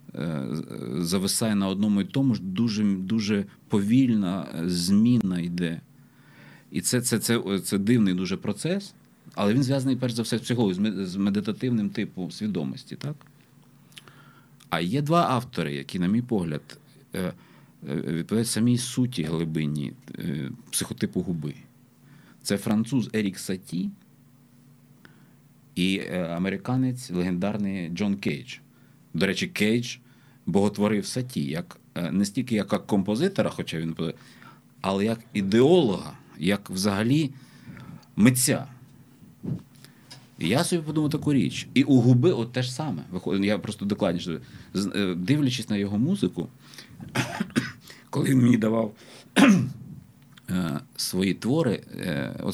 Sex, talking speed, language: male, 115 wpm, Ukrainian